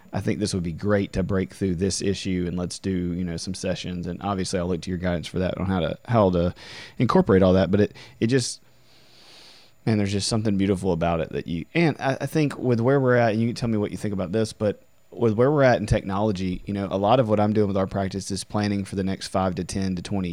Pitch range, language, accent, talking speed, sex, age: 95-110 Hz, English, American, 275 wpm, male, 30-49